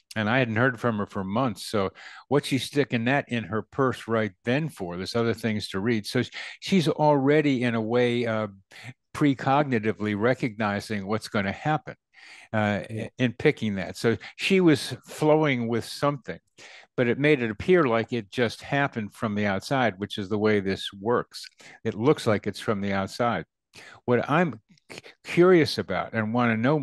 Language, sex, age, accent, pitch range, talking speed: English, male, 60-79, American, 105-135 Hz, 180 wpm